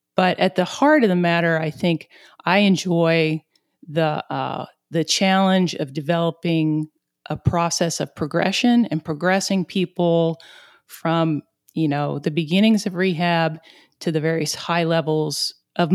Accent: American